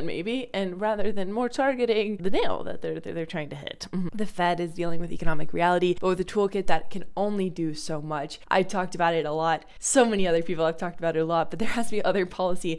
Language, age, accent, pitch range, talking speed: English, 20-39, American, 160-195 Hz, 265 wpm